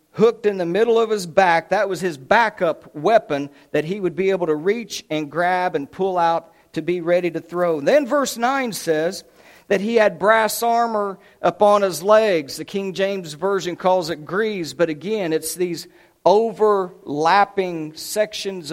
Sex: male